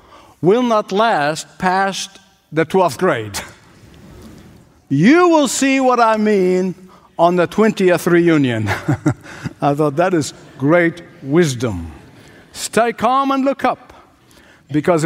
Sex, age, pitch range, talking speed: male, 60-79, 160-200 Hz, 115 wpm